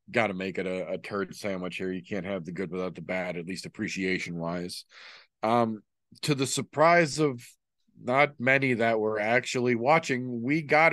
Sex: male